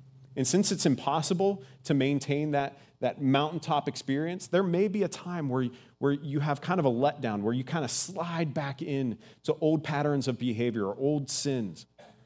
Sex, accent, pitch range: male, American, 130-185 Hz